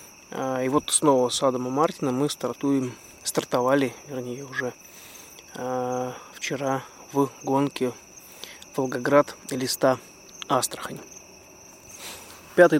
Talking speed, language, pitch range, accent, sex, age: 85 wpm, Russian, 125-145 Hz, native, male, 20-39